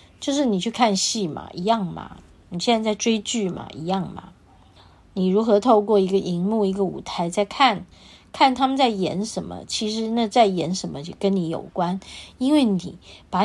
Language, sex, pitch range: Chinese, female, 170-215 Hz